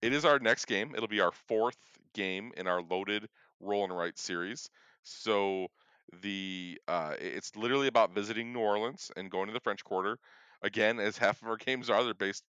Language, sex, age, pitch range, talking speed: English, male, 40-59, 95-120 Hz, 195 wpm